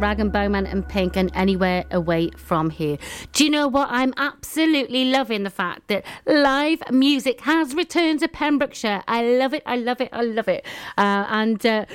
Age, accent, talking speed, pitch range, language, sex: 40-59, British, 190 wpm, 190-245 Hz, English, female